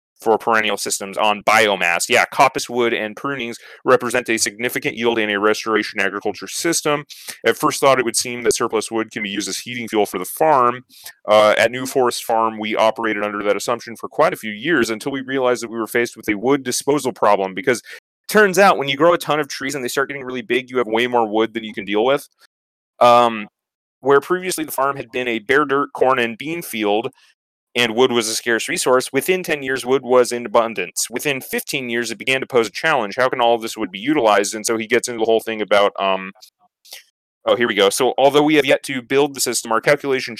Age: 30-49